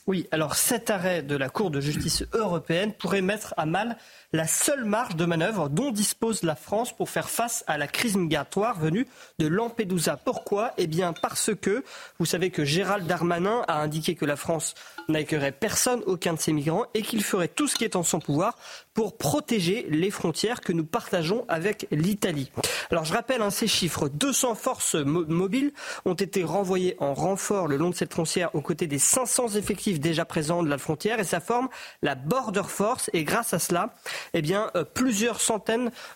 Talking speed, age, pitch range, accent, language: 195 wpm, 40-59, 165-225 Hz, French, French